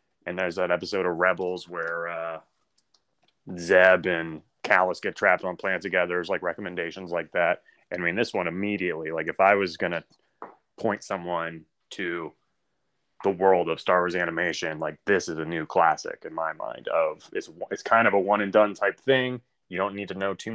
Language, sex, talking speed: English, male, 200 wpm